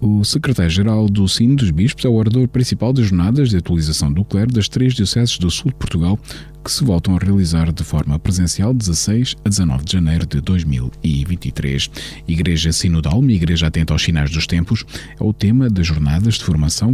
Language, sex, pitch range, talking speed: Portuguese, male, 80-110 Hz, 195 wpm